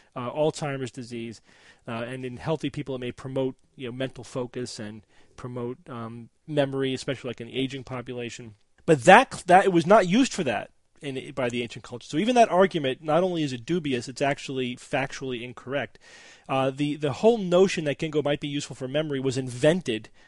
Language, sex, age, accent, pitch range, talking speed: English, male, 30-49, American, 125-165 Hz, 190 wpm